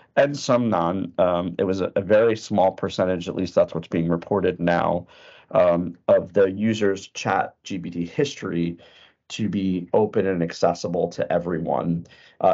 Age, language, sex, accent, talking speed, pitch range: 40-59, English, male, American, 160 wpm, 85-105 Hz